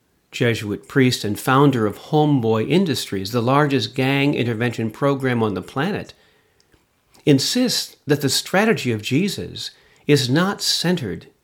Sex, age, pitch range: male, 50-69, 115-170 Hz